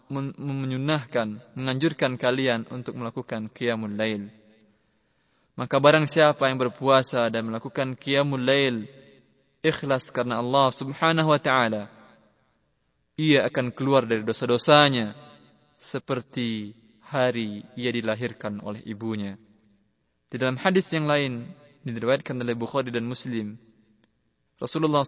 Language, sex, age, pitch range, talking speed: Indonesian, male, 20-39, 115-140 Hz, 105 wpm